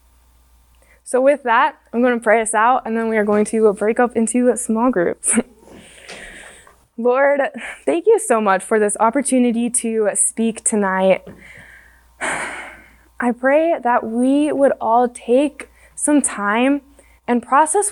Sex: female